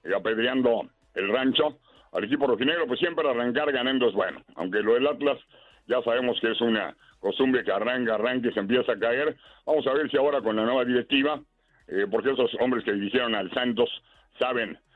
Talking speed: 195 wpm